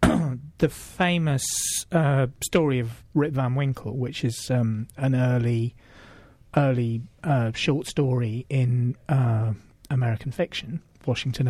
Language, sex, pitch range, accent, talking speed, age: English, male, 115-140 Hz, British, 115 wpm, 40-59